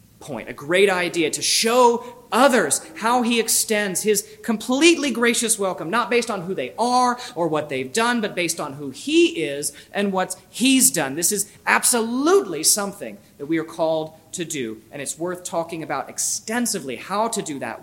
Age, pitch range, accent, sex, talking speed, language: 30-49, 140-230 Hz, American, male, 180 wpm, English